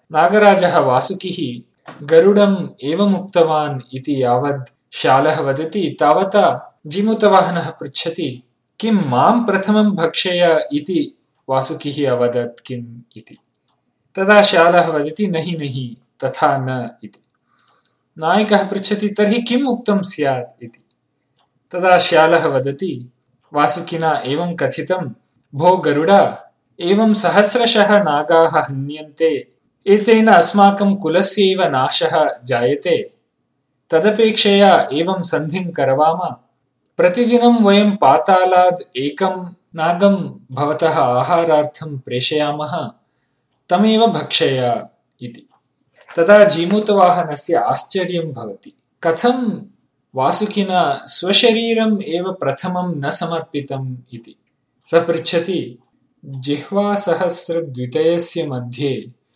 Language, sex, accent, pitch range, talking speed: Hindi, male, native, 145-200 Hz, 65 wpm